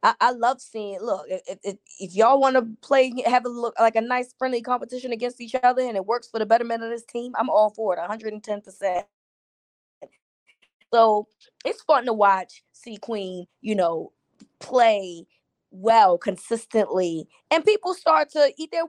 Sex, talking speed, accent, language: female, 170 wpm, American, English